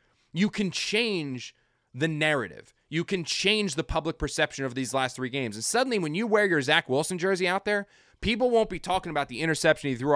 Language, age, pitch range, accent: English, 20-39, 130-180 Hz, American